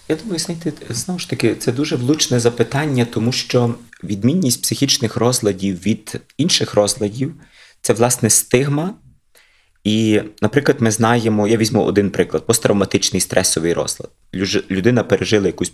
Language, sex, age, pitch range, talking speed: Ukrainian, male, 30-49, 95-125 Hz, 135 wpm